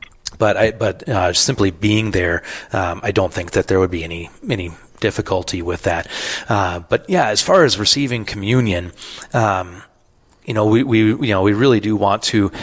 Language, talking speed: English, 190 wpm